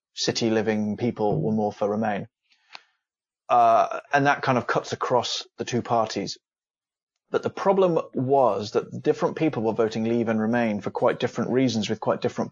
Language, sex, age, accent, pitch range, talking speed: English, male, 20-39, British, 110-130 Hz, 170 wpm